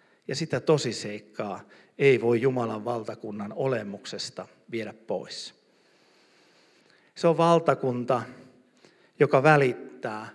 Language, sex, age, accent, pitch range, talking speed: Finnish, male, 50-69, native, 110-140 Hz, 95 wpm